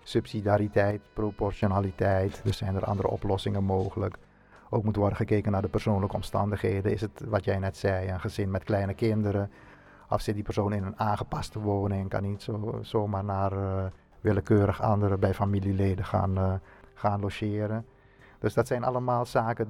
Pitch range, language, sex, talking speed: 95-110 Hz, Dutch, male, 165 wpm